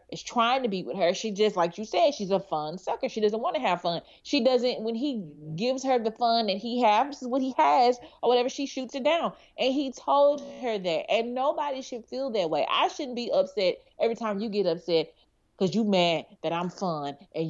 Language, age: English, 30-49